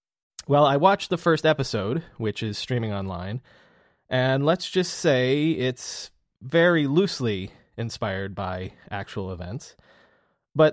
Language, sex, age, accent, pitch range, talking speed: English, male, 20-39, American, 110-145 Hz, 125 wpm